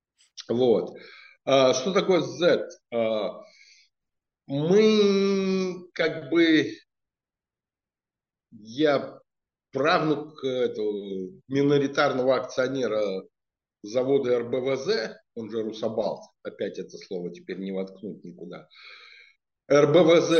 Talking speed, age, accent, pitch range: 75 wpm, 60-79, native, 130-185 Hz